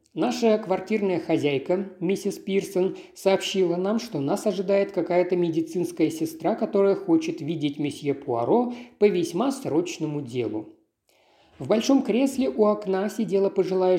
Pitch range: 165-230 Hz